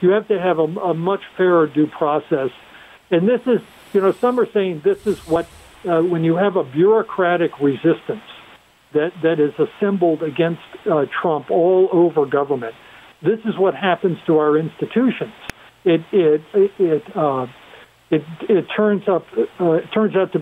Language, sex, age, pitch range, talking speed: English, male, 60-79, 160-205 Hz, 145 wpm